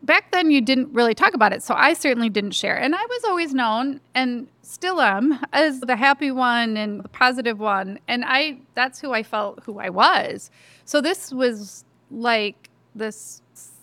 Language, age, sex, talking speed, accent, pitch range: English, 30-49, female, 185 wpm, American, 205-255 Hz